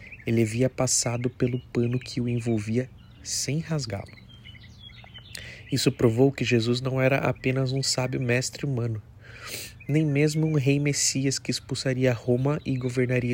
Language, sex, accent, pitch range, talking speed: Portuguese, male, Brazilian, 115-135 Hz, 140 wpm